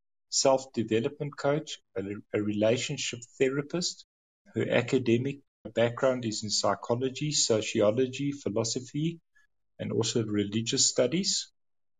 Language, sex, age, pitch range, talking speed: English, male, 50-69, 100-125 Hz, 90 wpm